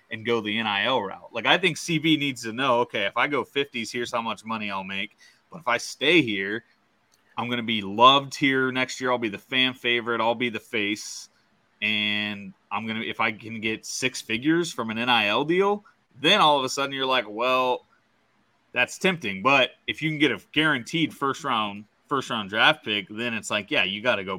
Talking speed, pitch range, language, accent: 215 wpm, 110-135 Hz, English, American